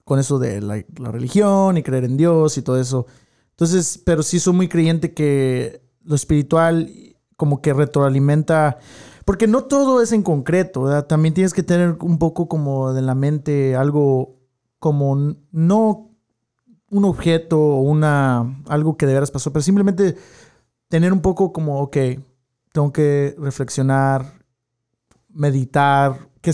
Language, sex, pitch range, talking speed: Spanish, male, 130-165 Hz, 145 wpm